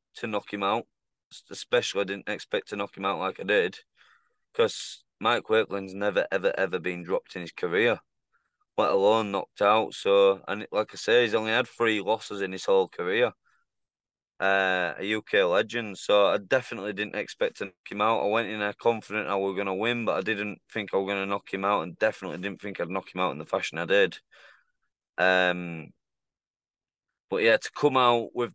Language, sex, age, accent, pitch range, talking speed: English, male, 20-39, British, 100-130 Hz, 205 wpm